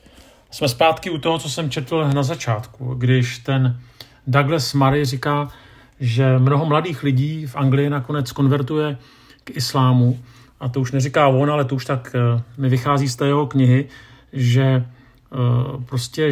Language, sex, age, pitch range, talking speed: Czech, male, 40-59, 120-140 Hz, 145 wpm